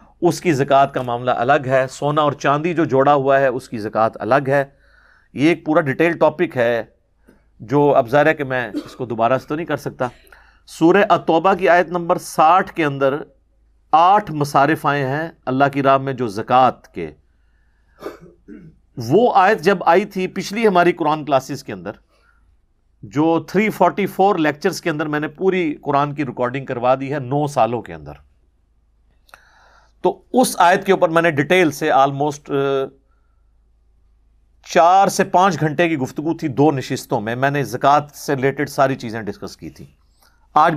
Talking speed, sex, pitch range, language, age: 170 wpm, male, 130-175 Hz, Urdu, 50-69